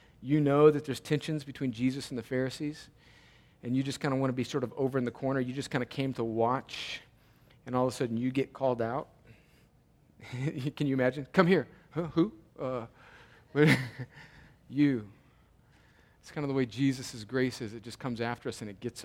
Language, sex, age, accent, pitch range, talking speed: English, male, 40-59, American, 125-165 Hz, 210 wpm